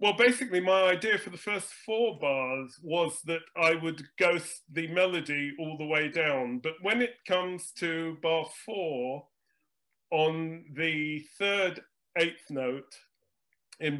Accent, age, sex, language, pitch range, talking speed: British, 40-59, male, English, 150-185 Hz, 140 wpm